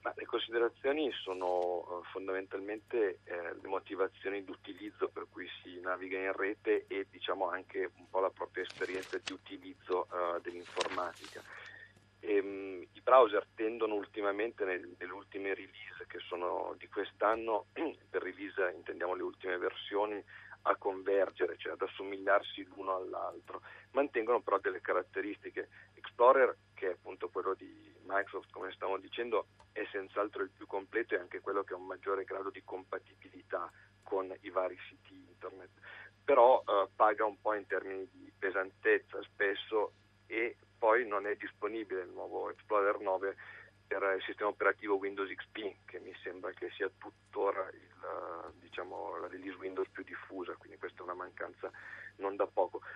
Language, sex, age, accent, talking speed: Italian, male, 40-59, native, 145 wpm